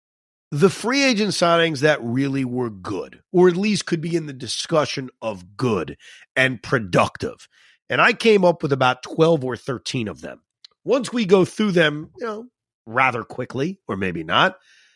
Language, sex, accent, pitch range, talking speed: English, male, American, 130-180 Hz, 175 wpm